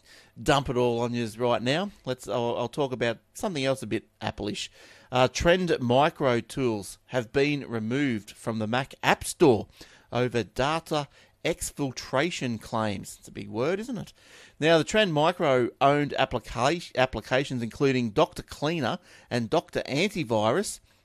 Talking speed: 145 wpm